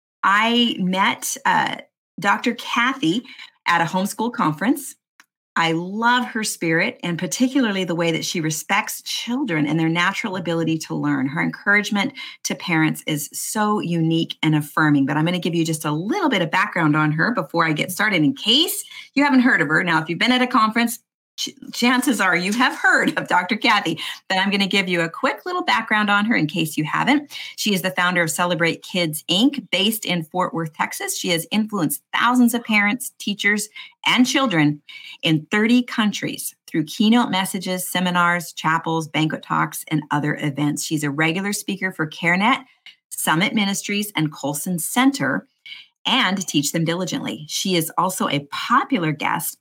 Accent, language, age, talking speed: American, English, 40-59, 180 wpm